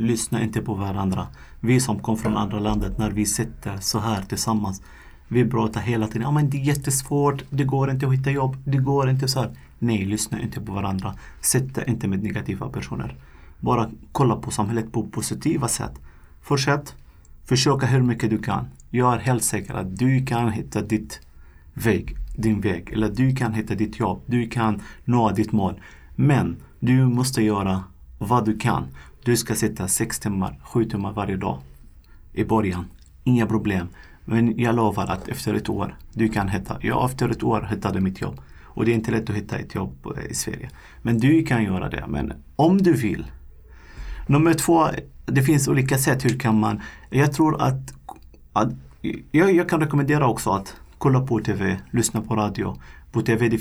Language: Swedish